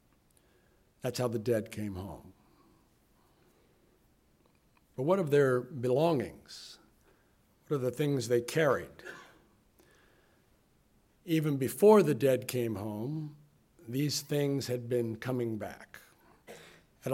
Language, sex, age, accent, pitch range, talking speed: English, male, 60-79, American, 120-150 Hz, 105 wpm